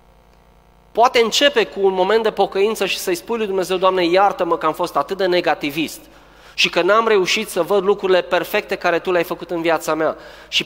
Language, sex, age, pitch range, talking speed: Romanian, male, 20-39, 125-200 Hz, 205 wpm